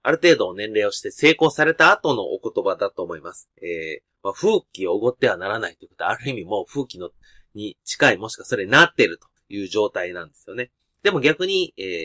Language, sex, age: Japanese, male, 30-49